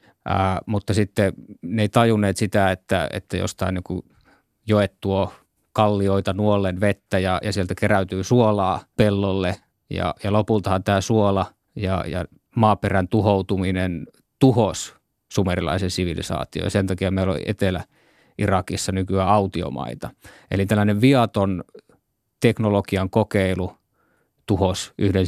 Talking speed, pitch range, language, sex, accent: 115 wpm, 95-110 Hz, Finnish, male, native